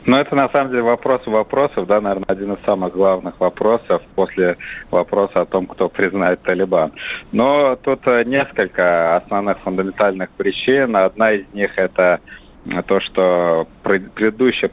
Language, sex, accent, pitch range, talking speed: Russian, male, native, 85-100 Hz, 145 wpm